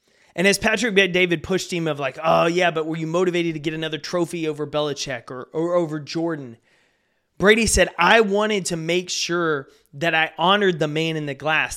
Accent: American